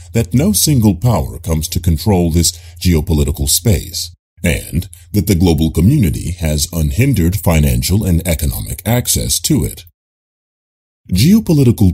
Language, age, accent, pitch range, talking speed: English, 40-59, American, 80-100 Hz, 120 wpm